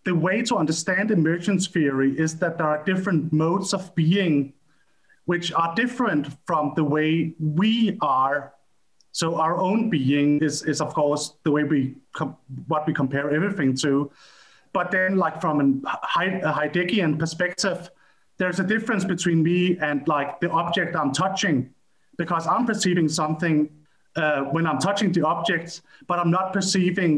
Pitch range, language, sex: 145-185 Hz, English, male